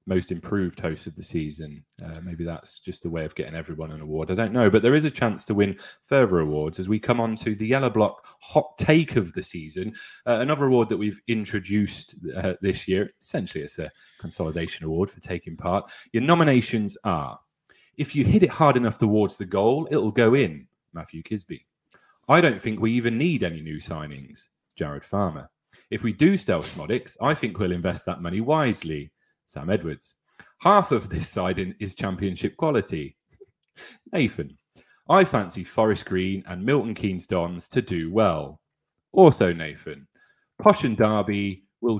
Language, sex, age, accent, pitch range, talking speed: English, male, 30-49, British, 90-120 Hz, 180 wpm